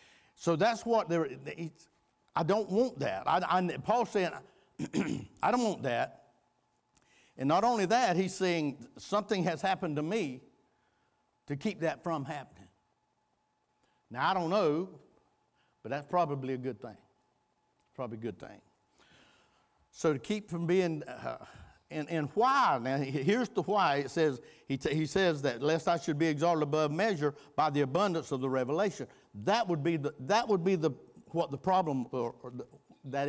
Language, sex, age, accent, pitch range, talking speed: English, male, 60-79, American, 145-190 Hz, 165 wpm